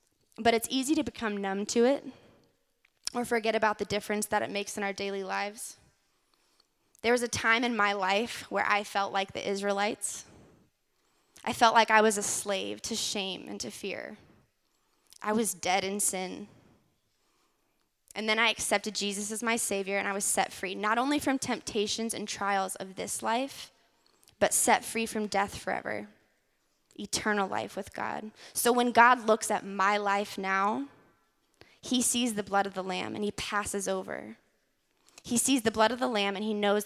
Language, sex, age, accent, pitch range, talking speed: English, female, 20-39, American, 200-225 Hz, 180 wpm